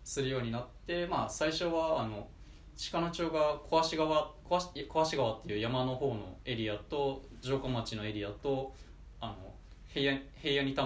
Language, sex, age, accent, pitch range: Japanese, male, 20-39, native, 105-140 Hz